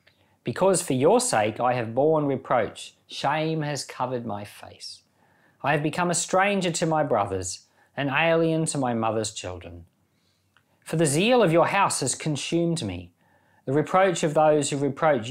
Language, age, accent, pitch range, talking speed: English, 40-59, Australian, 110-160 Hz, 165 wpm